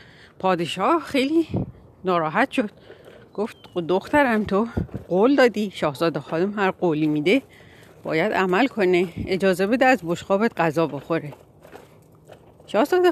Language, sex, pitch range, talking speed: Persian, female, 170-245 Hz, 110 wpm